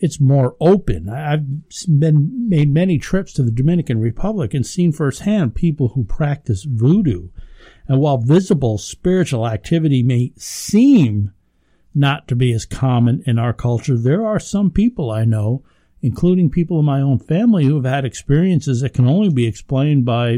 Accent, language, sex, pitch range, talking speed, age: American, English, male, 120-155 Hz, 165 wpm, 60-79